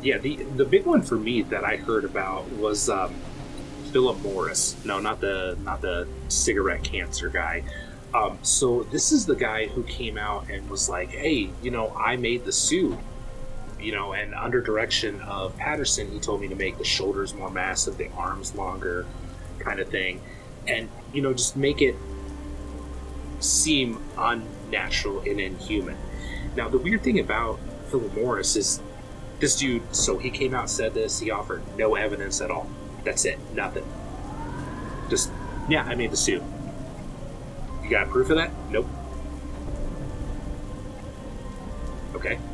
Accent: American